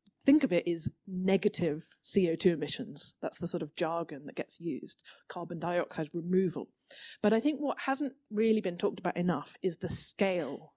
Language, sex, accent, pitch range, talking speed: English, female, British, 170-215 Hz, 175 wpm